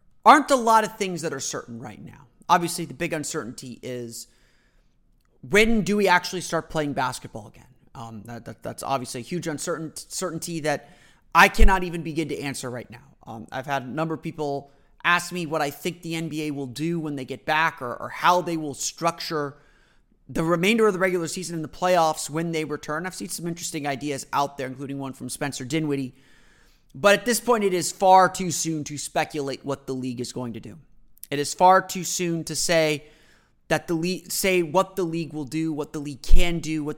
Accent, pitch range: American, 140-175 Hz